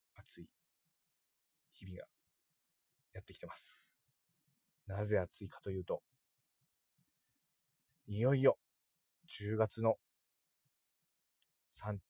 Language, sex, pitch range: Japanese, male, 100-140 Hz